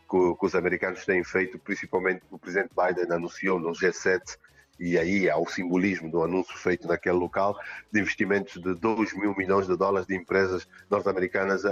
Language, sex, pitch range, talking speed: Portuguese, male, 95-110 Hz, 170 wpm